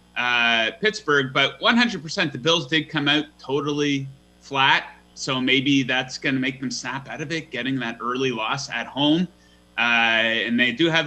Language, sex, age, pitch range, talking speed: English, male, 30-49, 130-180 Hz, 180 wpm